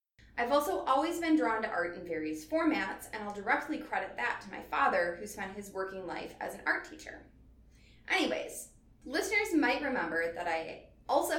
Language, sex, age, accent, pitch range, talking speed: English, female, 20-39, American, 185-285 Hz, 180 wpm